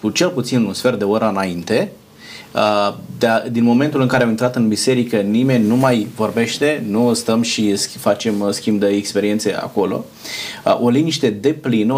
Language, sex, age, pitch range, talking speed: Romanian, male, 30-49, 110-145 Hz, 170 wpm